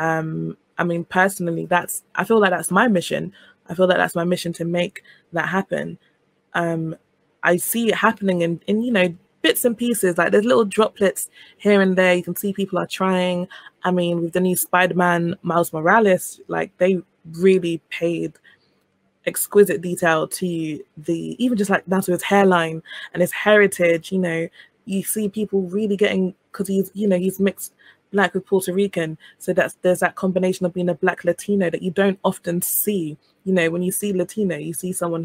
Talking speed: 190 wpm